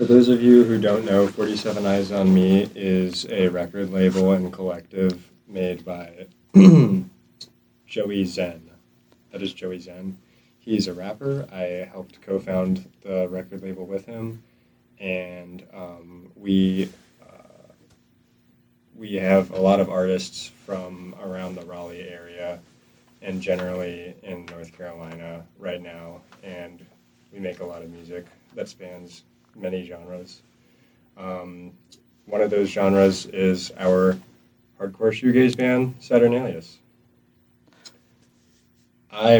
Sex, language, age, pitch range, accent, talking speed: male, English, 20-39, 85-100 Hz, American, 125 wpm